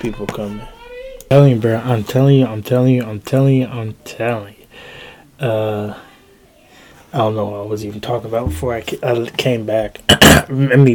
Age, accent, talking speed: 20-39, American, 180 wpm